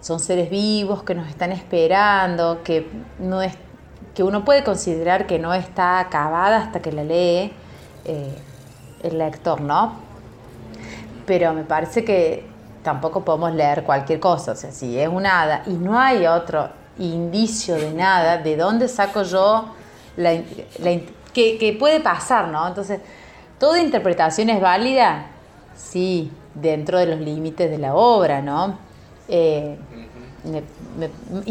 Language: Spanish